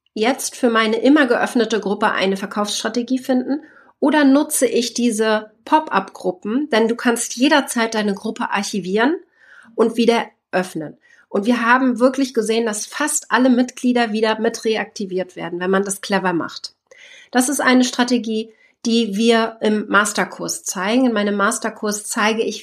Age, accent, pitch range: 30-49, German, 200-245 Hz